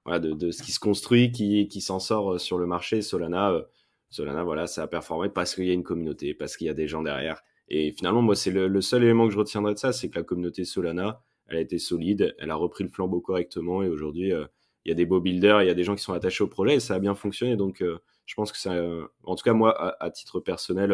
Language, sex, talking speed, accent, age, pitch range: French, male, 285 wpm, French, 20-39, 90-105 Hz